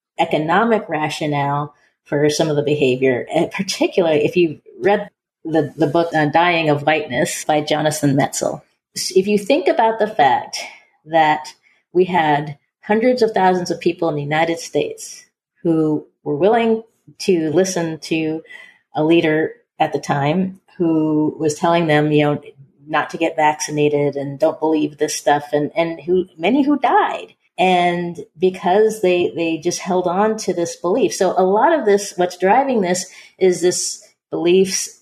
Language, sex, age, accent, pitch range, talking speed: English, female, 30-49, American, 150-190 Hz, 160 wpm